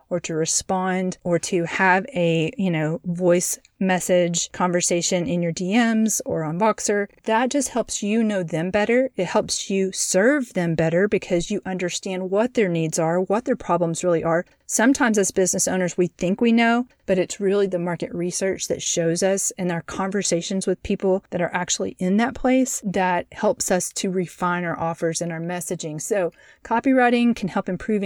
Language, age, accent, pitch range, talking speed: English, 30-49, American, 170-205 Hz, 185 wpm